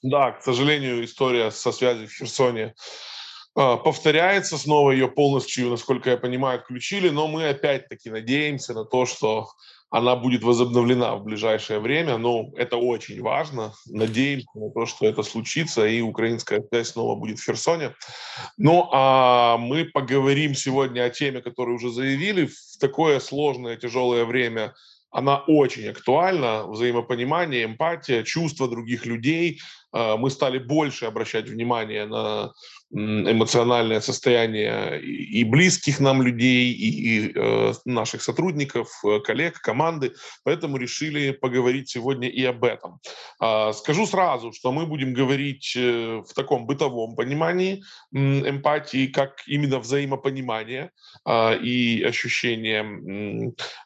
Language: Russian